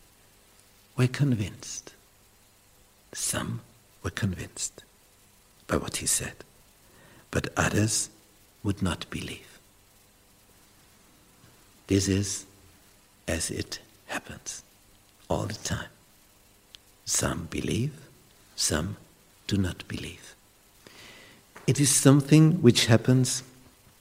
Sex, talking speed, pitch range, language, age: male, 80 wpm, 100-120 Hz, English, 60-79